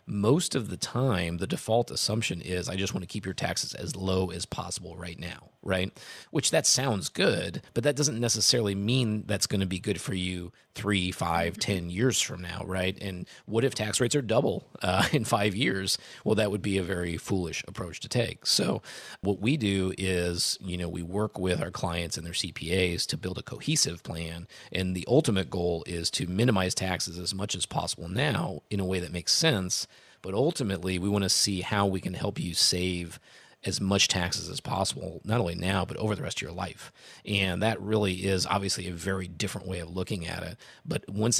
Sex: male